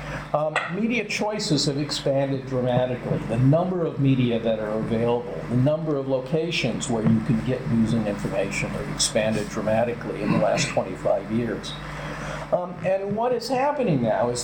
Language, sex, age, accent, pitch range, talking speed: English, male, 50-69, American, 130-165 Hz, 160 wpm